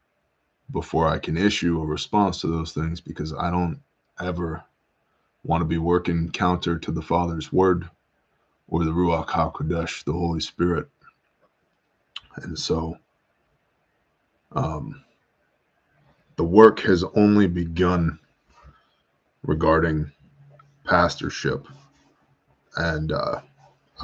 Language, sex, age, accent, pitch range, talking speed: English, male, 20-39, American, 80-95 Hz, 100 wpm